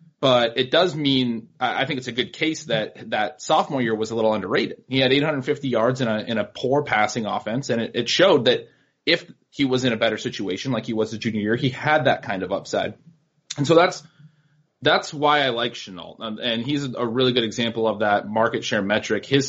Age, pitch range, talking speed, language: 30-49, 110-135 Hz, 230 wpm, English